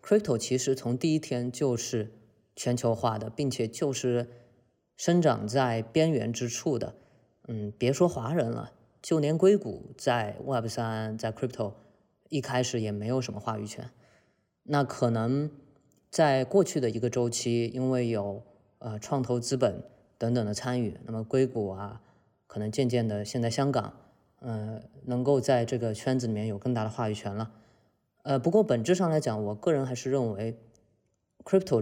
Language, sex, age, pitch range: Chinese, female, 20-39, 115-135 Hz